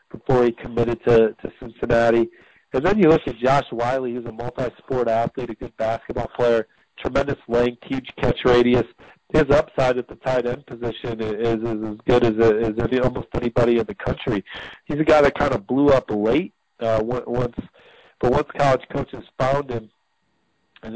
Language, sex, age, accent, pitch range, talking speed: English, male, 40-59, American, 110-130 Hz, 180 wpm